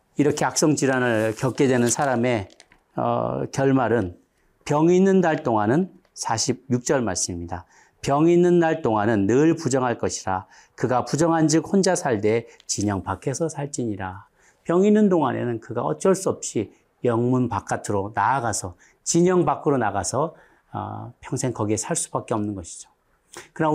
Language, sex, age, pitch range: Korean, male, 40-59, 110-160 Hz